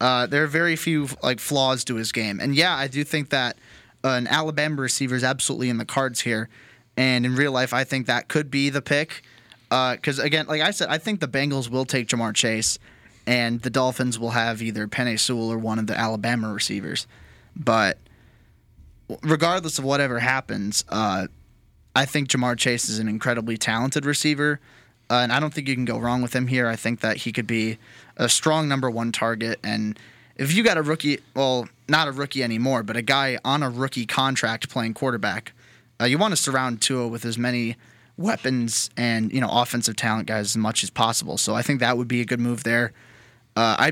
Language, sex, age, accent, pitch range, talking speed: English, male, 20-39, American, 115-135 Hz, 210 wpm